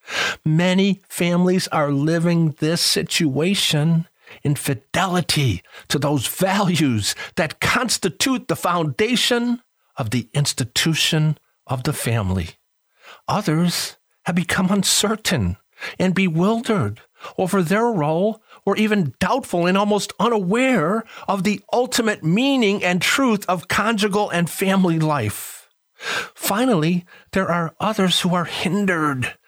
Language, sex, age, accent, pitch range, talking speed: English, male, 50-69, American, 150-205 Hz, 110 wpm